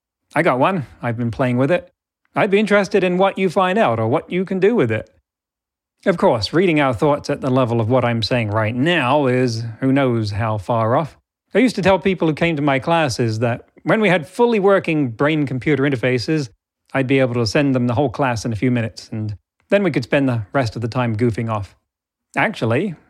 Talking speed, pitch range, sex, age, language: 225 wpm, 115-160 Hz, male, 40-59, English